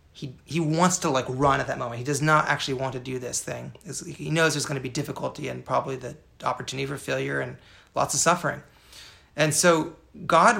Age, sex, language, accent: 30-49, male, English, American